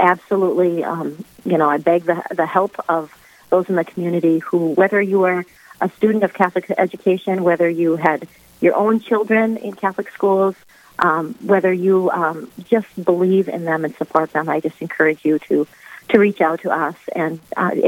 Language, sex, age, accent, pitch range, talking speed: English, female, 40-59, American, 165-195 Hz, 185 wpm